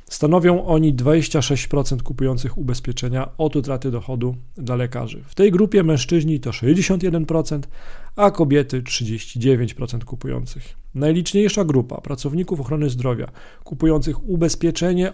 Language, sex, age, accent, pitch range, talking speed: Polish, male, 40-59, native, 125-160 Hz, 105 wpm